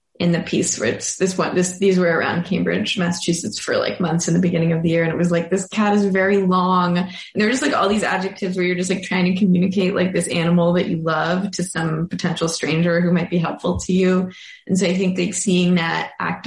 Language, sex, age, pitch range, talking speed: English, female, 20-39, 175-200 Hz, 250 wpm